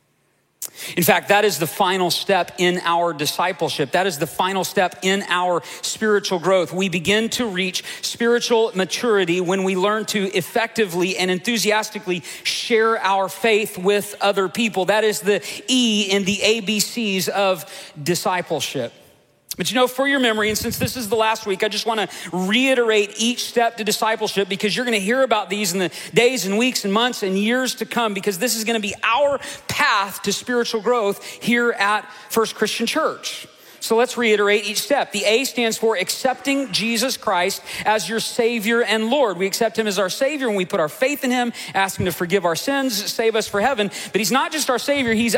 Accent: American